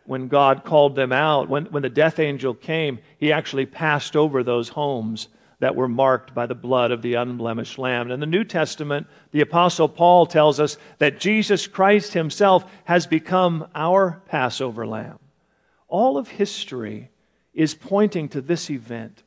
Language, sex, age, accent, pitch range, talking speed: English, male, 50-69, American, 130-180 Hz, 165 wpm